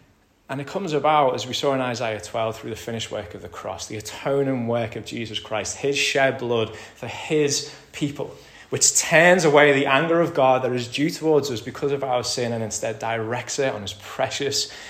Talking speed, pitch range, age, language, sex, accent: 210 wpm, 105-140 Hz, 20-39, English, male, British